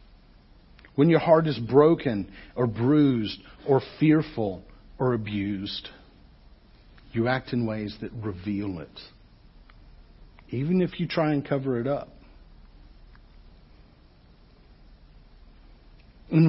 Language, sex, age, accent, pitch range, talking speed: English, male, 50-69, American, 110-160 Hz, 100 wpm